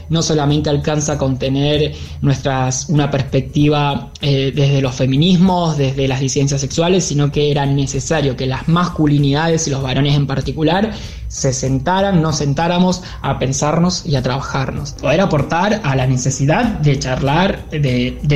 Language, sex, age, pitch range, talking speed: Spanish, male, 20-39, 135-155 Hz, 150 wpm